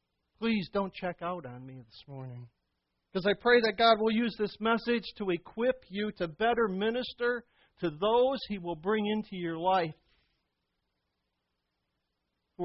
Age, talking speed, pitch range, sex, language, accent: 50-69, 150 wpm, 155-215 Hz, male, English, American